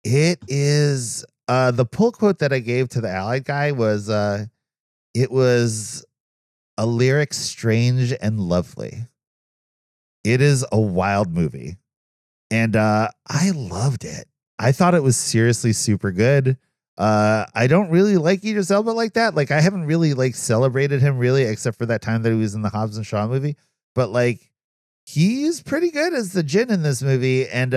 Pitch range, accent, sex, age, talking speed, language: 110-145 Hz, American, male, 30-49, 175 wpm, English